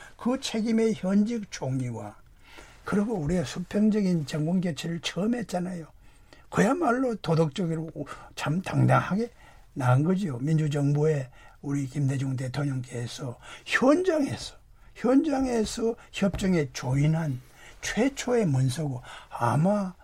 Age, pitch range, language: 60-79, 150-210 Hz, Korean